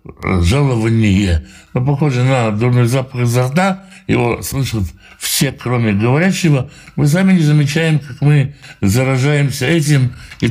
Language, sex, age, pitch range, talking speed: Russian, male, 60-79, 110-145 Hz, 125 wpm